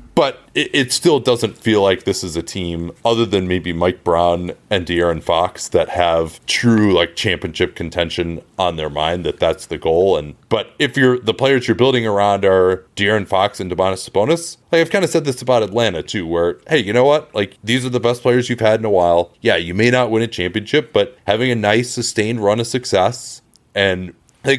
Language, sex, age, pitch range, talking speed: English, male, 30-49, 90-120 Hz, 215 wpm